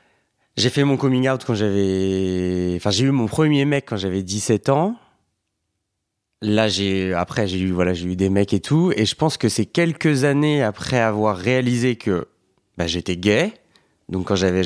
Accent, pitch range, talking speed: French, 100-135 Hz, 190 wpm